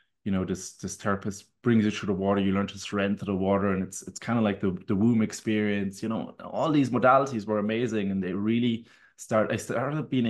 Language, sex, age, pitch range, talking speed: English, male, 20-39, 95-115 Hz, 240 wpm